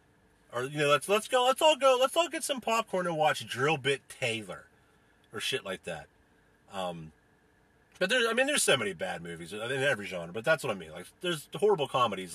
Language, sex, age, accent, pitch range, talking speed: English, male, 40-59, American, 100-170 Hz, 220 wpm